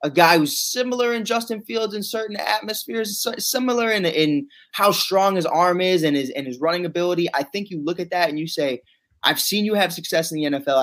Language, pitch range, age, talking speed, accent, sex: English, 145-190 Hz, 20-39, 220 wpm, American, male